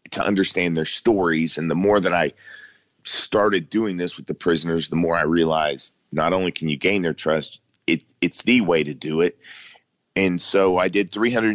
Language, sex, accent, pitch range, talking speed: English, male, American, 80-90 Hz, 195 wpm